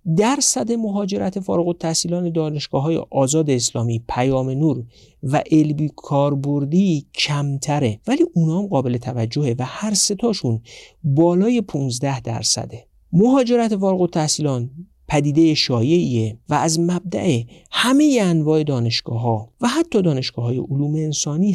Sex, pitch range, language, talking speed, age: male, 125-175 Hz, Persian, 105 wpm, 50-69